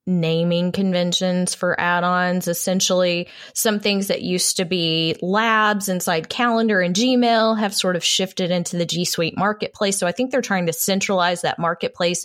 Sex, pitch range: female, 165-210 Hz